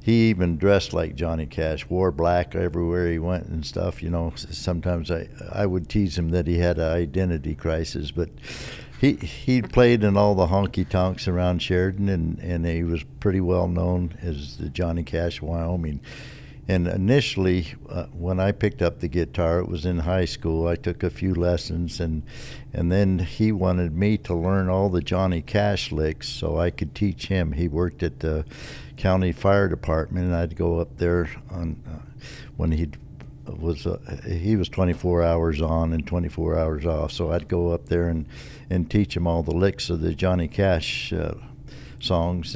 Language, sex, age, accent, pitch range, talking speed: English, male, 60-79, American, 80-95 Hz, 185 wpm